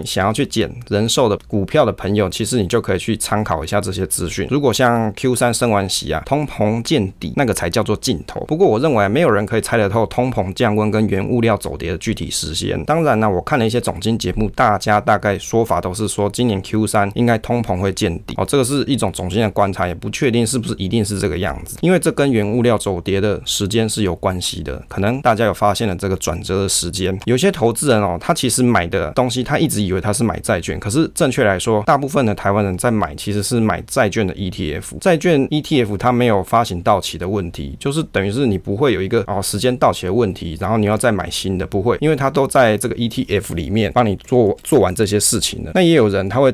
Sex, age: male, 20-39